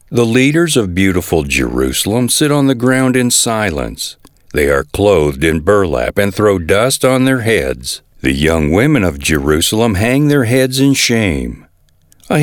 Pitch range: 95-135 Hz